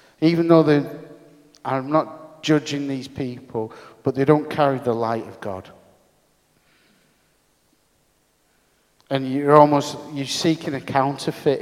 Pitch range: 125-150 Hz